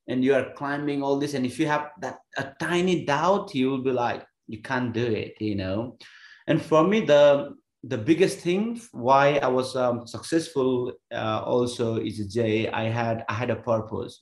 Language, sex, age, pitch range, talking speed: English, male, 30-49, 115-140 Hz, 195 wpm